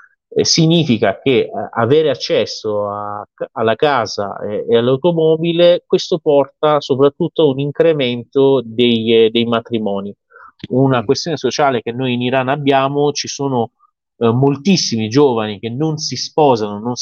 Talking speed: 125 wpm